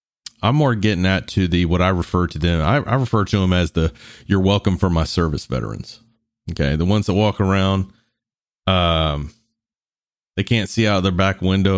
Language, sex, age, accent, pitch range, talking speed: English, male, 40-59, American, 85-115 Hz, 195 wpm